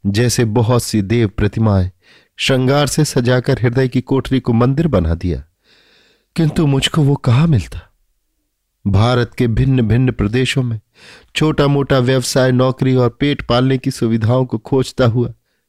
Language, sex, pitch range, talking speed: Hindi, male, 110-130 Hz, 145 wpm